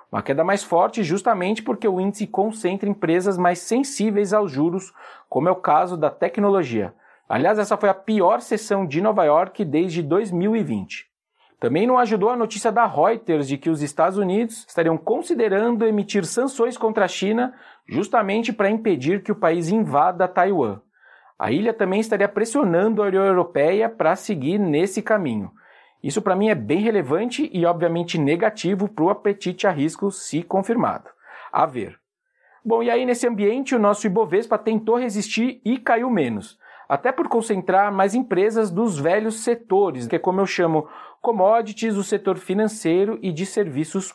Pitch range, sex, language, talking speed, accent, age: 180-225 Hz, male, Portuguese, 165 wpm, Brazilian, 40-59